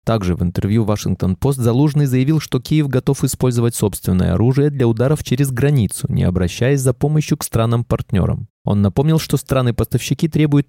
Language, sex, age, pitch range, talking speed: Russian, male, 20-39, 100-140 Hz, 150 wpm